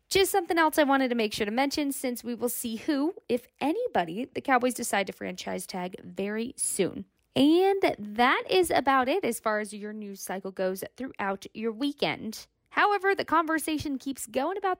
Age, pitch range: 10-29, 215-295 Hz